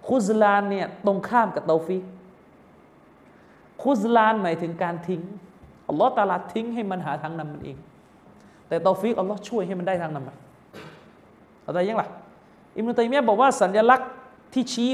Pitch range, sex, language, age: 170-235 Hz, male, Thai, 30-49